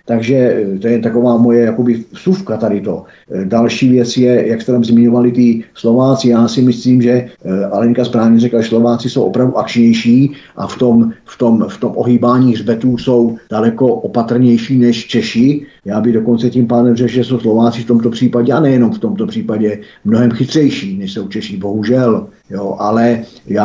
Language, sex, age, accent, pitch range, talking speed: Czech, male, 50-69, native, 110-120 Hz, 180 wpm